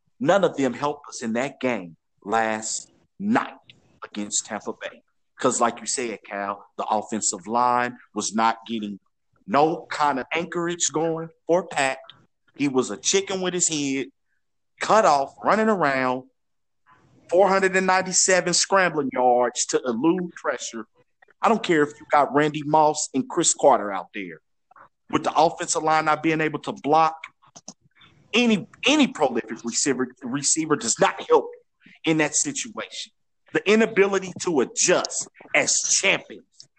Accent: American